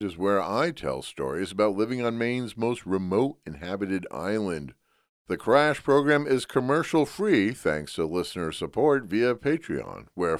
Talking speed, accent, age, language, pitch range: 145 wpm, American, 50-69, English, 105-145 Hz